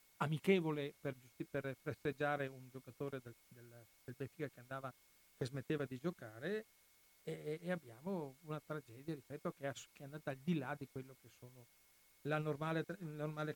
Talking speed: 165 wpm